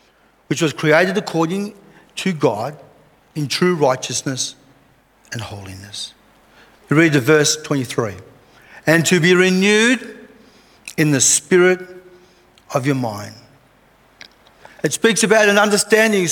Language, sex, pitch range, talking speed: English, male, 165-220 Hz, 115 wpm